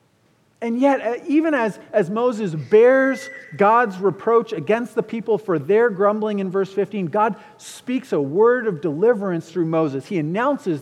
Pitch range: 155-235 Hz